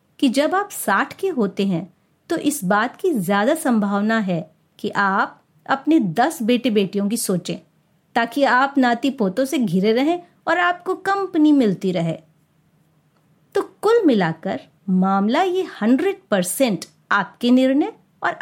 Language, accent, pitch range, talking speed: Hindi, native, 195-300 Hz, 145 wpm